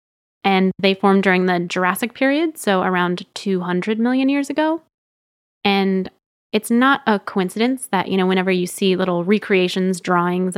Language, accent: English, American